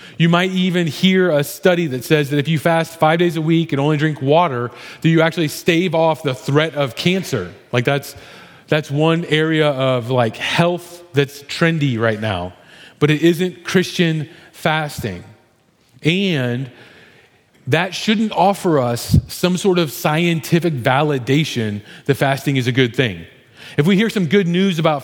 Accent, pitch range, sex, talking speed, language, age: American, 135-175 Hz, male, 165 wpm, English, 30-49